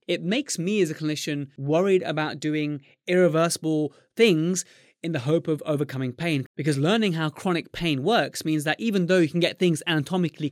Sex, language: male, English